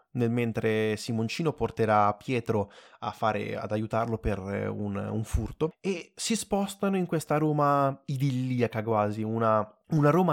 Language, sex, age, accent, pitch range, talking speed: Italian, male, 20-39, native, 115-175 Hz, 140 wpm